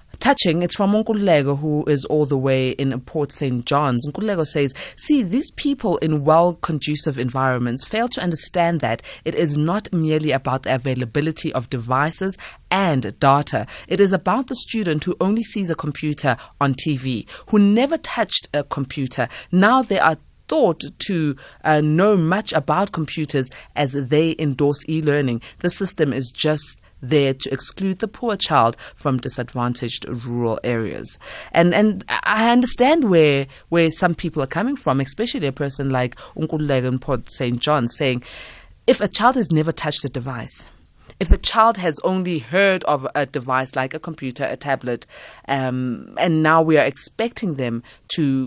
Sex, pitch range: female, 135-180 Hz